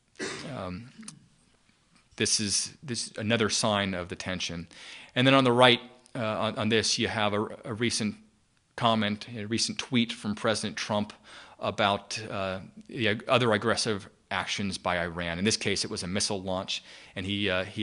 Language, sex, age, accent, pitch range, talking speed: English, male, 30-49, American, 105-125 Hz, 175 wpm